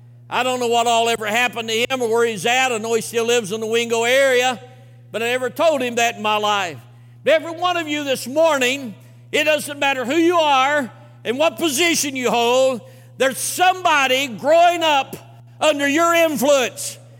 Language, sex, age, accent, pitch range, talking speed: English, male, 60-79, American, 195-265 Hz, 190 wpm